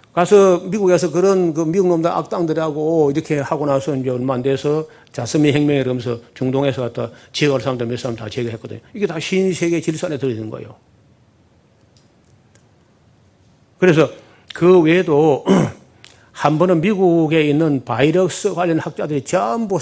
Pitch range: 130-175 Hz